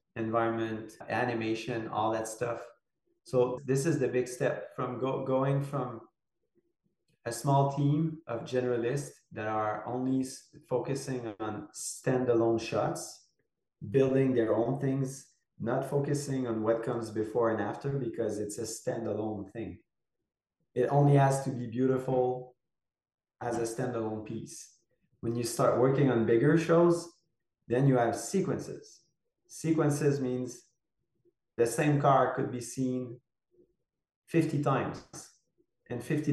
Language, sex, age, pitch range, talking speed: English, male, 30-49, 115-140 Hz, 125 wpm